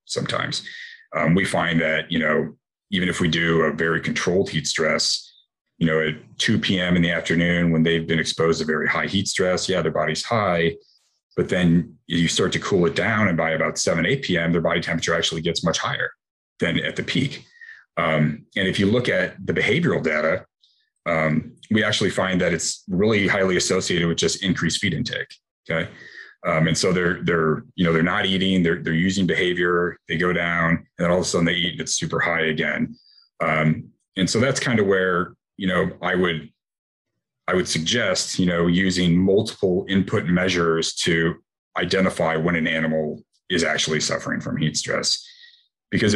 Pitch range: 80-90 Hz